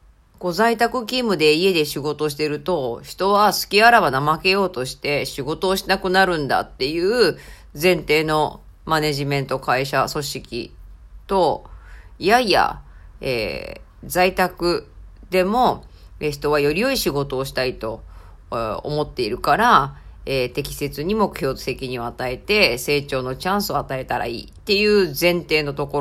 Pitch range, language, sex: 140-195 Hz, Japanese, female